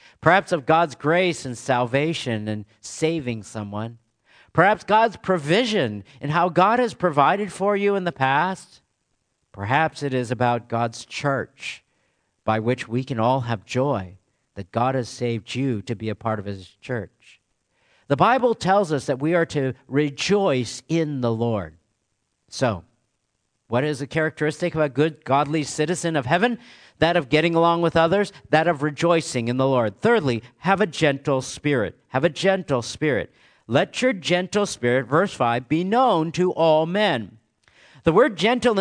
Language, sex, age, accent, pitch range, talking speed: English, male, 50-69, American, 120-180 Hz, 165 wpm